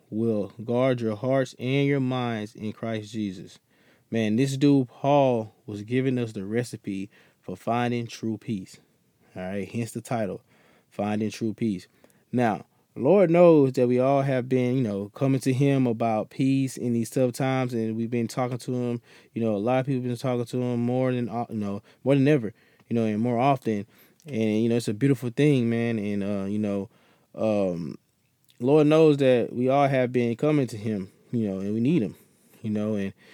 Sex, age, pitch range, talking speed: male, 20-39, 110-130 Hz, 200 wpm